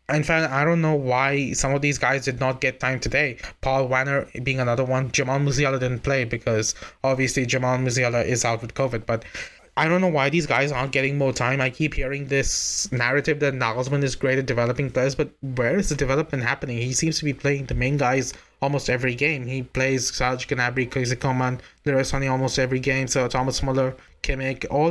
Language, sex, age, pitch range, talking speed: English, male, 20-39, 130-145 Hz, 205 wpm